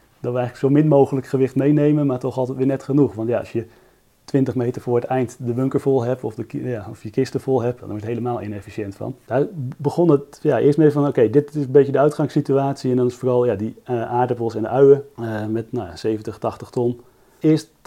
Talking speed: 250 wpm